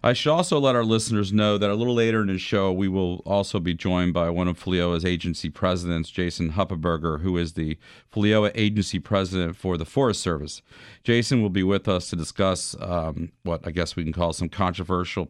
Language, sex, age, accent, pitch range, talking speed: English, male, 40-59, American, 85-100 Hz, 210 wpm